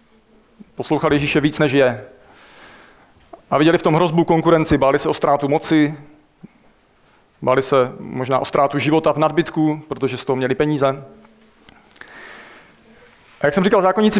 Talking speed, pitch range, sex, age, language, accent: 145 wpm, 130-155 Hz, male, 40-59, Czech, native